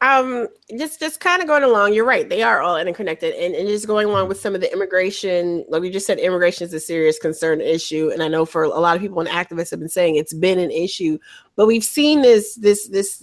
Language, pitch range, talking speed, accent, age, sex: English, 160-200 Hz, 255 wpm, American, 30-49, female